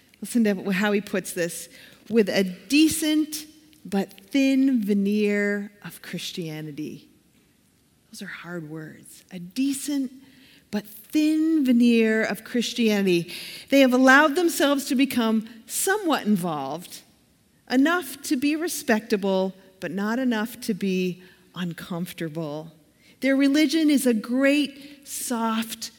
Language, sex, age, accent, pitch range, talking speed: English, female, 40-59, American, 180-265 Hz, 115 wpm